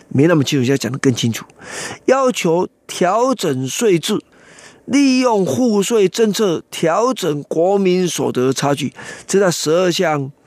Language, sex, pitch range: Chinese, male, 145-220 Hz